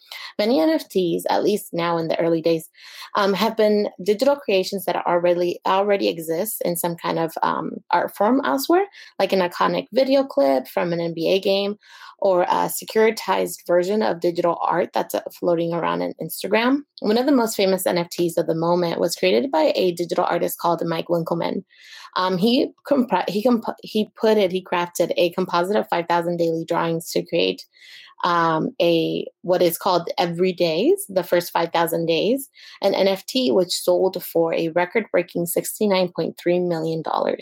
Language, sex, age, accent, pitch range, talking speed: English, female, 20-39, American, 170-220 Hz, 170 wpm